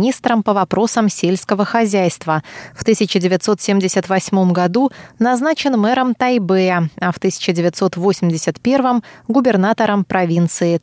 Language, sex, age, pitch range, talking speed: Russian, female, 20-39, 180-225 Hz, 90 wpm